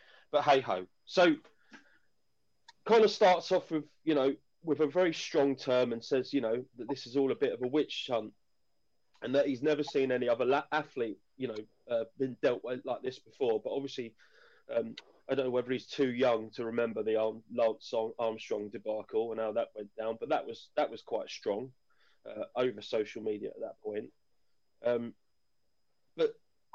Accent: British